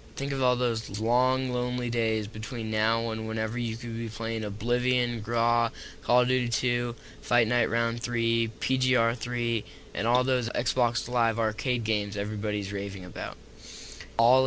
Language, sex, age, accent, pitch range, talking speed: English, male, 10-29, American, 110-125 Hz, 160 wpm